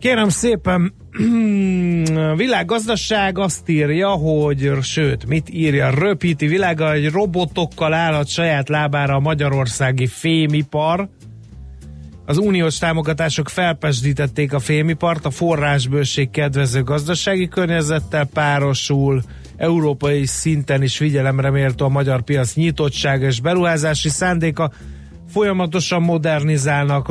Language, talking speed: Hungarian, 105 wpm